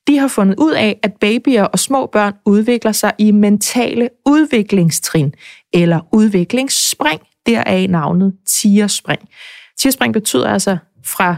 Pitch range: 185-240 Hz